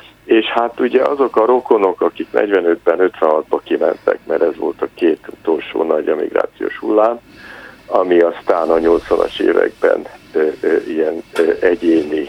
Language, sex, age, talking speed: Hungarian, male, 60-79, 125 wpm